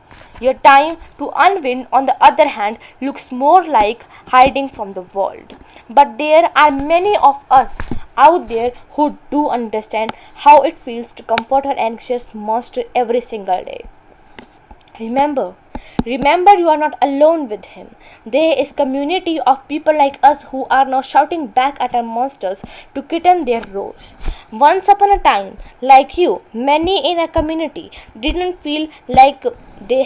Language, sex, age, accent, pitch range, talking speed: Hindi, female, 20-39, native, 245-325 Hz, 155 wpm